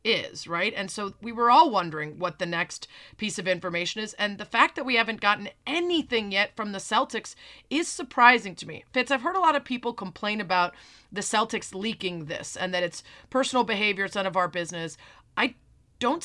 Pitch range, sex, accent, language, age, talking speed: 195-260 Hz, female, American, English, 30-49, 205 wpm